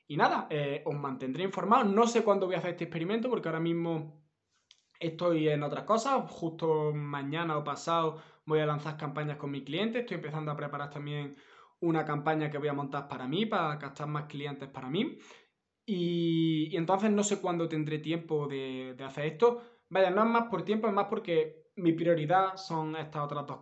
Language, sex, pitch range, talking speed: Spanish, male, 150-190 Hz, 200 wpm